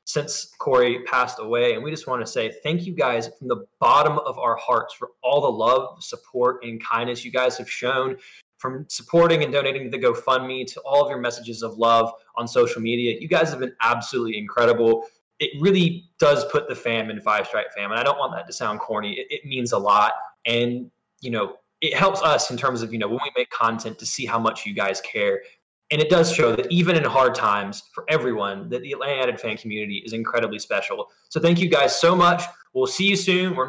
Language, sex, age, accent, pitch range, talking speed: English, male, 20-39, American, 120-175 Hz, 225 wpm